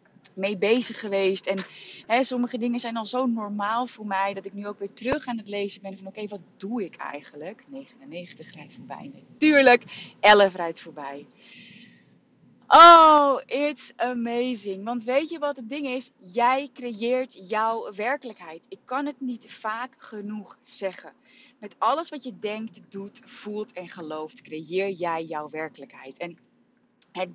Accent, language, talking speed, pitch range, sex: Dutch, Dutch, 155 wpm, 190-255 Hz, female